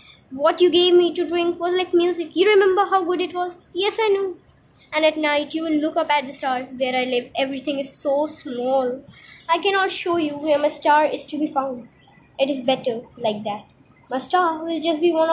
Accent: native